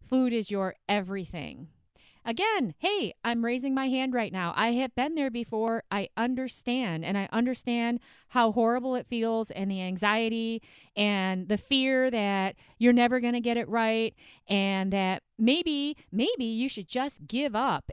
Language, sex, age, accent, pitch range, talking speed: English, female, 30-49, American, 210-260 Hz, 165 wpm